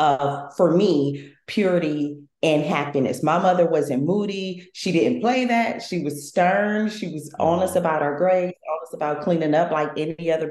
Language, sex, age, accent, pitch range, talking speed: English, female, 30-49, American, 155-200 Hz, 170 wpm